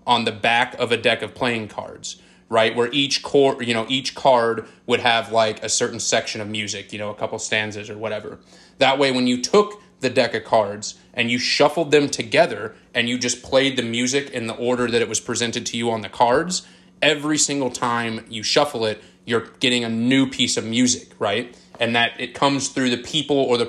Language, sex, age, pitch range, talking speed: English, male, 20-39, 115-135 Hz, 220 wpm